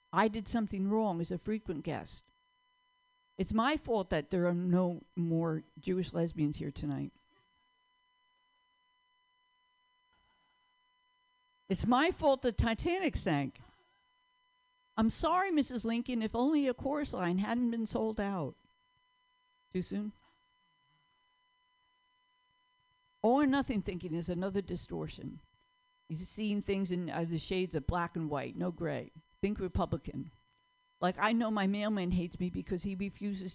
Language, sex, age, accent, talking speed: English, female, 60-79, American, 130 wpm